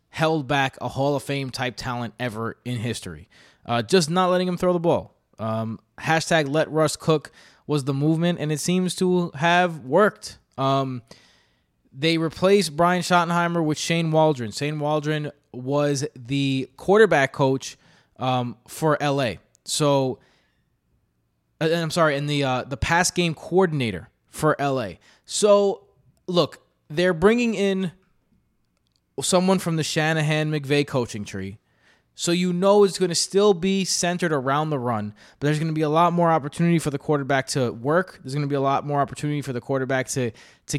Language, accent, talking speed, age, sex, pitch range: English, American, 165 wpm, 20-39, male, 130-175 Hz